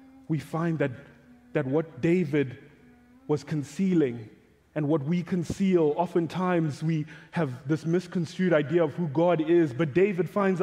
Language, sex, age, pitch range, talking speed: English, male, 20-39, 190-260 Hz, 140 wpm